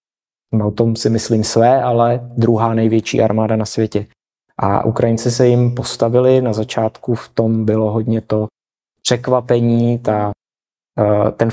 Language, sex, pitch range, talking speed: Czech, male, 110-125 Hz, 135 wpm